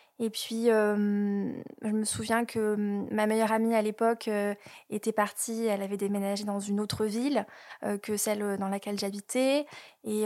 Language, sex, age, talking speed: French, female, 20-39, 170 wpm